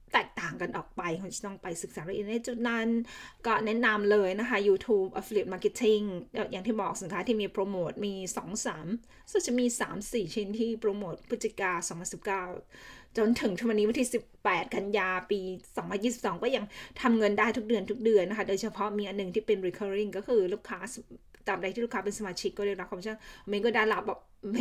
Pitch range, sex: 195-230 Hz, female